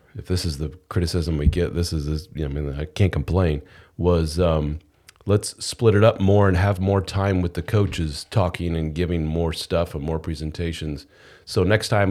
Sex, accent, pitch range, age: male, American, 80-100 Hz, 40-59